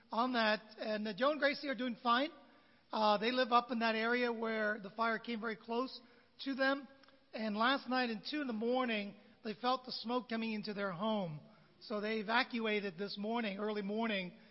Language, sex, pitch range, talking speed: English, male, 200-235 Hz, 200 wpm